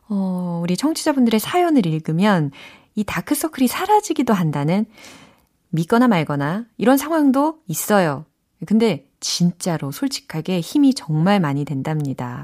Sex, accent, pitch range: female, native, 160-270 Hz